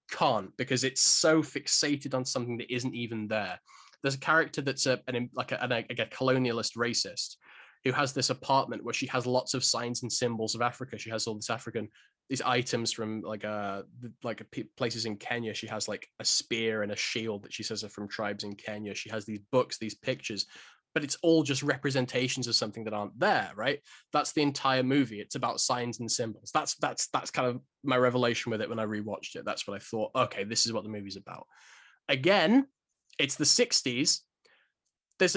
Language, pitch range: English, 115-145 Hz